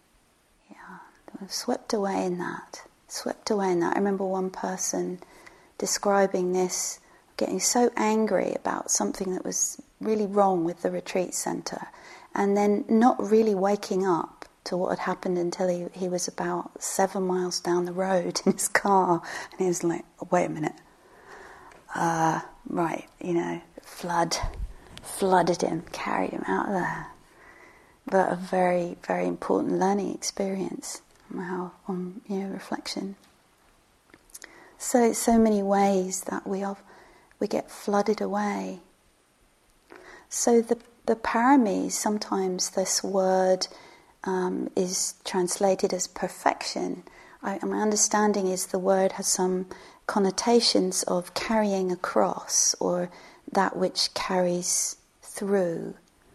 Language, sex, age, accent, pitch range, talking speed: English, female, 30-49, British, 180-205 Hz, 130 wpm